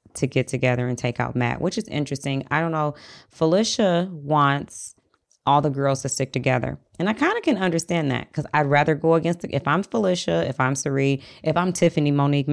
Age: 20-39